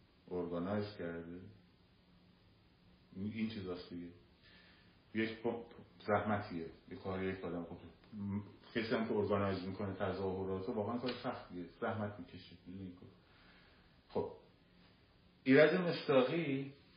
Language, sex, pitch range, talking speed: Persian, male, 90-120 Hz, 90 wpm